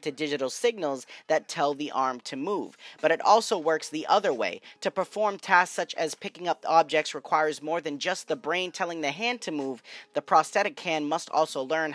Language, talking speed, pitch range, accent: English, 205 wpm, 145-190 Hz, American